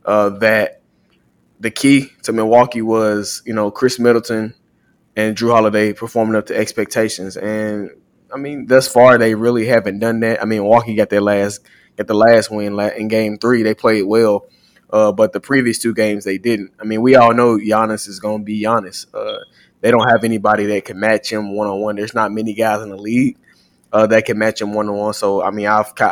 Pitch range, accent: 105-120 Hz, American